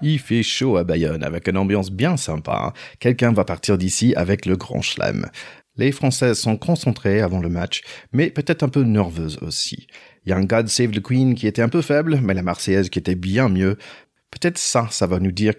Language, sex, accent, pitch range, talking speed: French, male, French, 95-130 Hz, 215 wpm